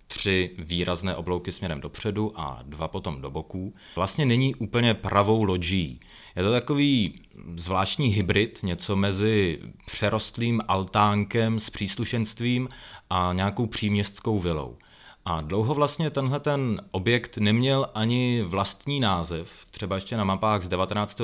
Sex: male